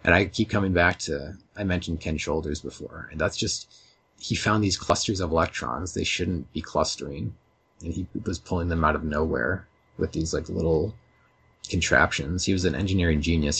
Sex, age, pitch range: male, 30-49, 80-95 Hz